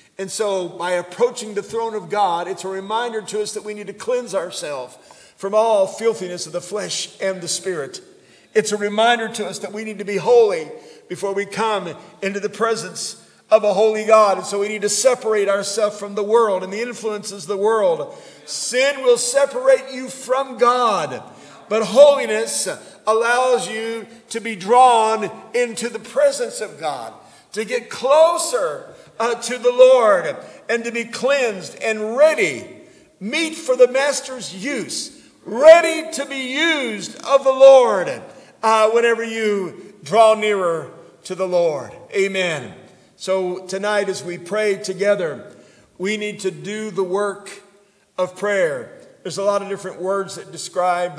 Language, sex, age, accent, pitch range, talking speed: English, male, 50-69, American, 190-245 Hz, 165 wpm